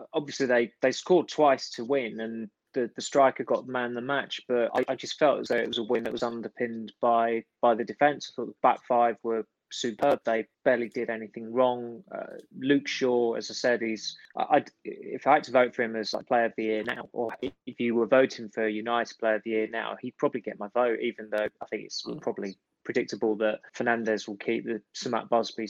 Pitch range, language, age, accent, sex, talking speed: 110-130 Hz, English, 20-39, British, male, 230 wpm